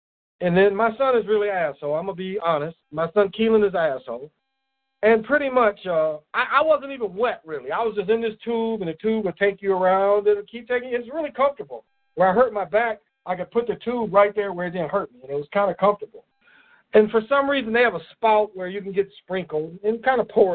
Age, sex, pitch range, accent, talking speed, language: 50-69, male, 165-240 Hz, American, 255 wpm, English